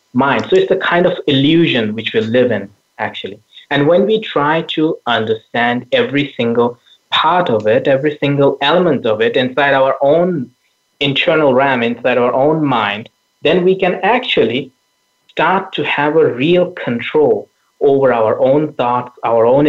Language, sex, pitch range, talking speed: English, male, 125-170 Hz, 160 wpm